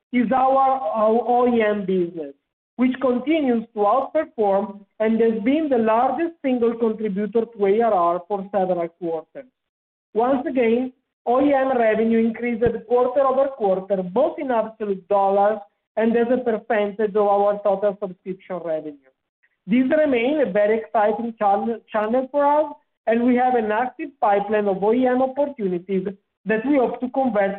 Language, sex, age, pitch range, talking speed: English, male, 50-69, 200-255 Hz, 140 wpm